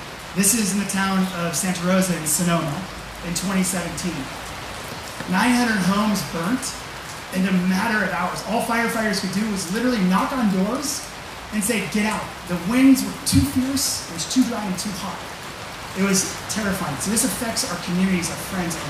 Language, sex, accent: English, male, American